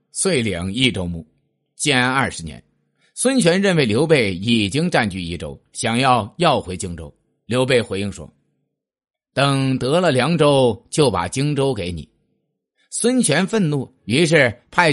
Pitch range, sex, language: 105-155 Hz, male, Chinese